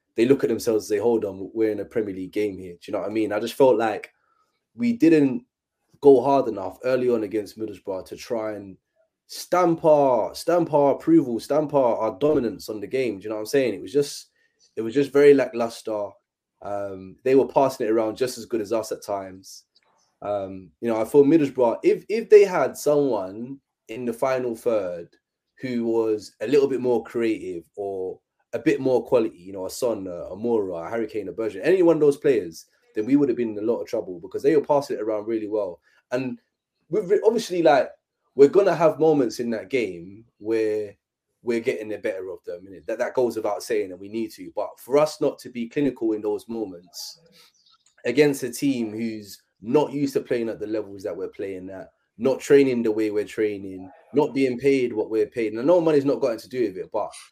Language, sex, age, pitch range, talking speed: English, male, 20-39, 110-175 Hz, 225 wpm